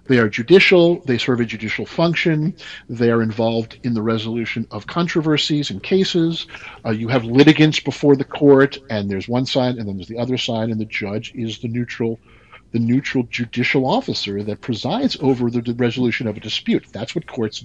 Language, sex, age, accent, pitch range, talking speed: English, male, 50-69, American, 115-160 Hz, 190 wpm